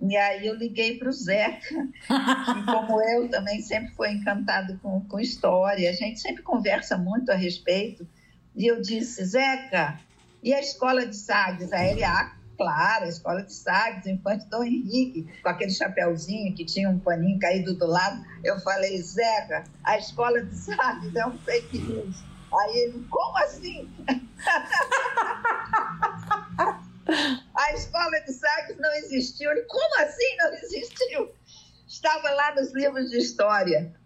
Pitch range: 185-260 Hz